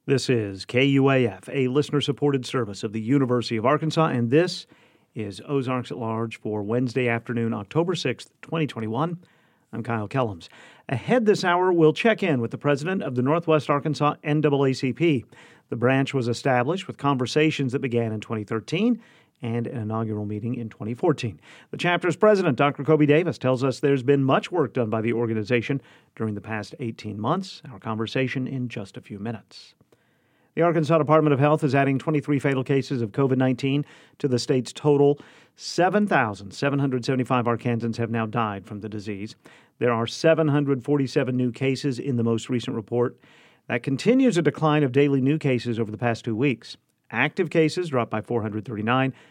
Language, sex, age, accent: English, male, 40-59, American